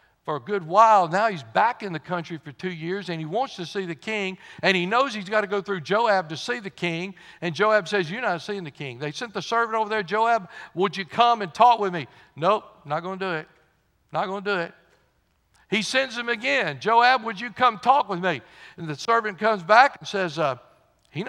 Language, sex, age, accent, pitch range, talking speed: English, male, 60-79, American, 150-210 Hz, 240 wpm